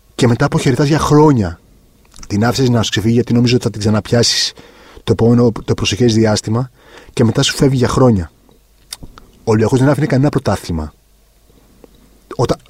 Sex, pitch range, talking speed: male, 110-135 Hz, 160 wpm